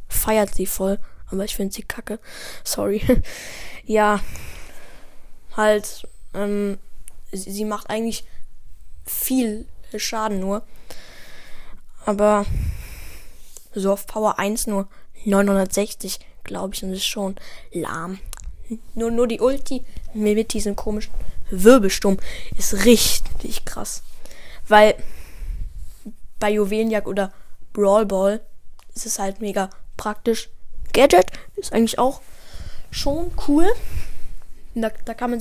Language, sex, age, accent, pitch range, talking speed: German, female, 10-29, German, 195-230 Hz, 110 wpm